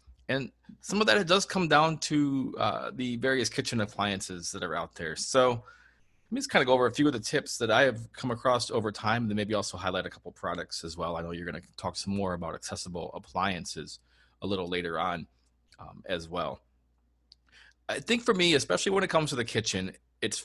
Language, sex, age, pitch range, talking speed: English, male, 30-49, 90-120 Hz, 225 wpm